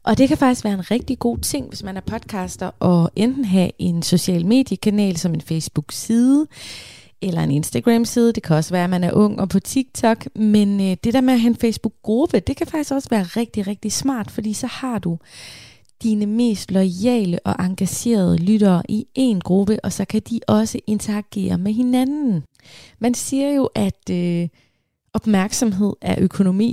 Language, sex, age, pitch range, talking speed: Danish, female, 20-39, 175-220 Hz, 185 wpm